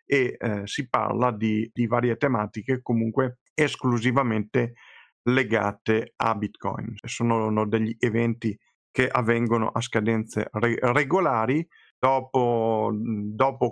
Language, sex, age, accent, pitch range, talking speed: Italian, male, 50-69, native, 110-130 Hz, 100 wpm